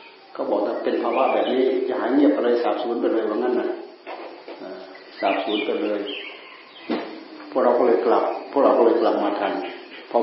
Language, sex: Thai, male